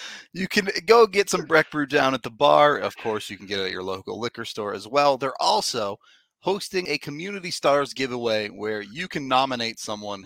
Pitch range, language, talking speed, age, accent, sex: 105-150 Hz, English, 205 wpm, 30-49, American, male